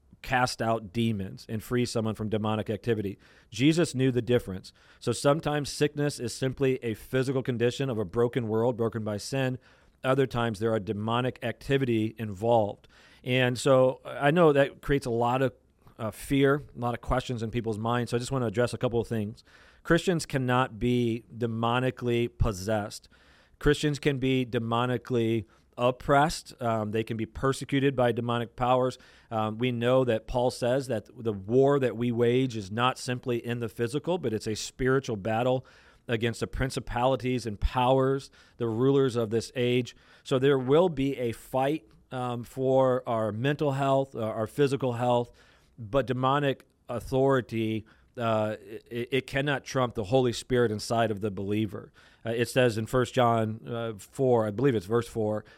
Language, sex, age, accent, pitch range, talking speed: English, male, 40-59, American, 115-130 Hz, 170 wpm